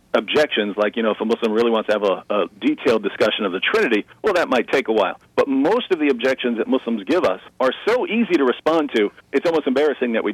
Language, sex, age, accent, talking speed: English, male, 40-59, American, 255 wpm